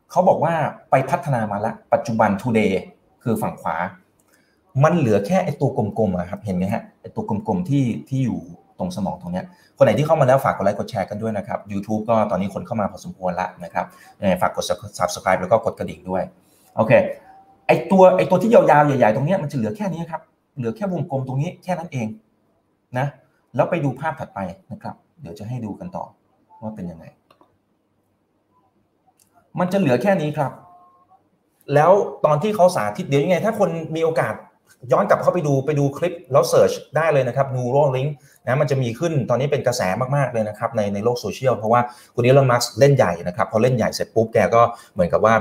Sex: male